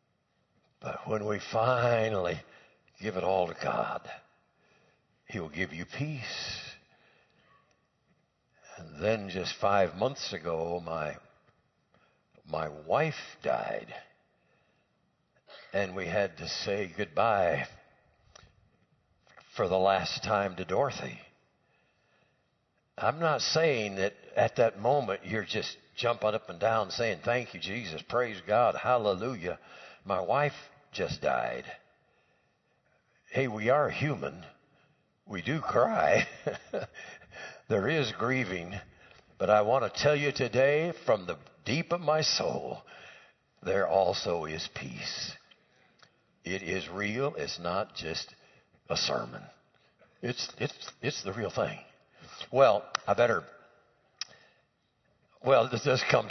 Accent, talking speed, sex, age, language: American, 115 wpm, male, 60-79, English